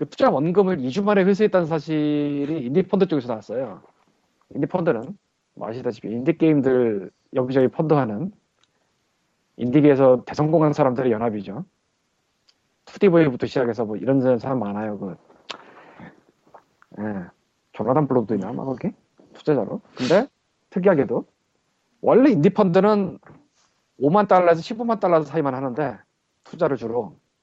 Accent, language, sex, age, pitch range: native, Korean, male, 40-59, 130-195 Hz